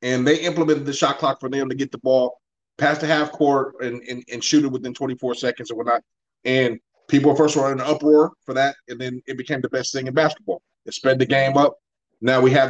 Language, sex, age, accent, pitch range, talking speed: English, male, 30-49, American, 130-155 Hz, 245 wpm